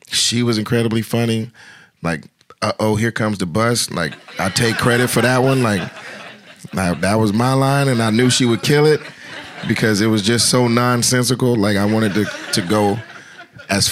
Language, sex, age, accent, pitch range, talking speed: English, male, 30-49, American, 95-115 Hz, 185 wpm